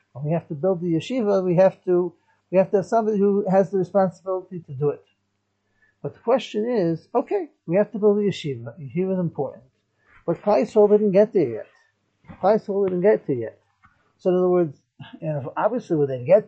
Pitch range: 130-190 Hz